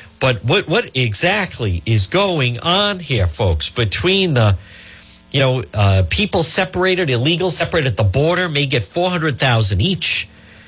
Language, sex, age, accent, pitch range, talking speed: English, male, 50-69, American, 105-165 Hz, 140 wpm